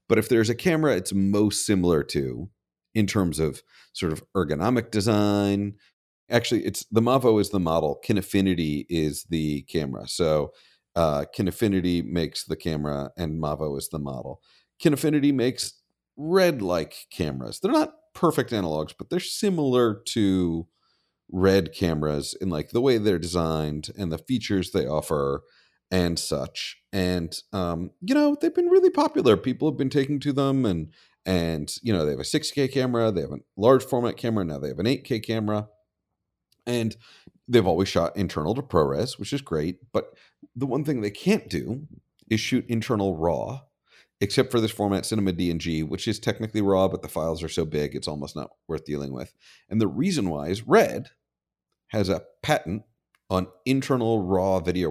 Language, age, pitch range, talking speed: English, 40-59, 85-125 Hz, 170 wpm